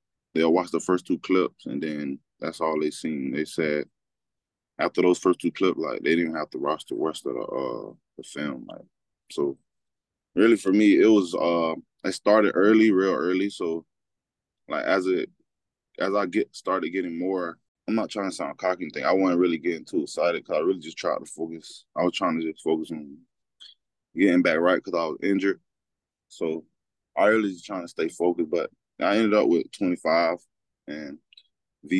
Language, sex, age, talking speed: English, male, 20-39, 200 wpm